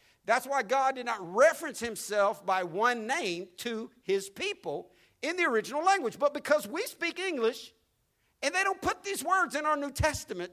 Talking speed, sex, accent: 180 wpm, male, American